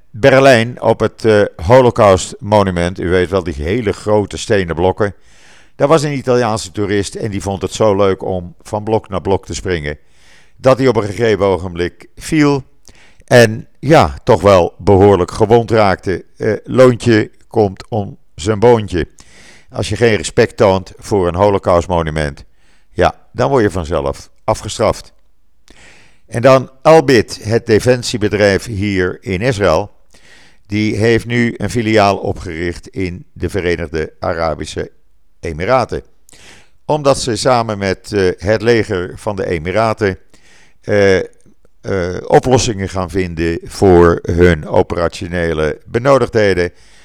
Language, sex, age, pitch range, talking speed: Dutch, male, 50-69, 90-115 Hz, 130 wpm